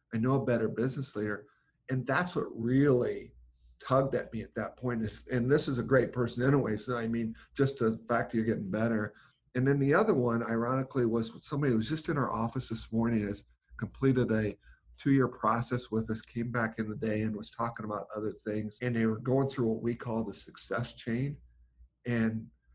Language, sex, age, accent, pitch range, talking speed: English, male, 50-69, American, 110-130 Hz, 210 wpm